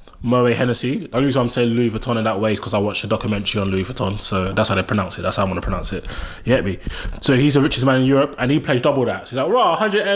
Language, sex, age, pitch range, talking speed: English, male, 20-39, 110-135 Hz, 305 wpm